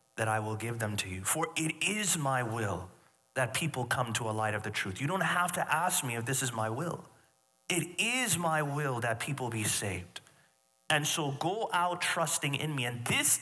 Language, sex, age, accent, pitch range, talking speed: English, male, 30-49, American, 115-195 Hz, 220 wpm